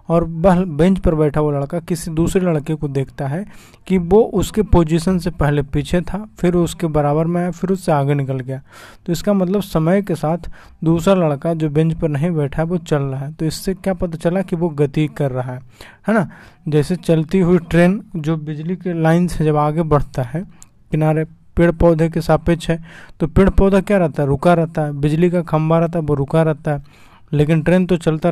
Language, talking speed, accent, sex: Hindi, 210 wpm, native, male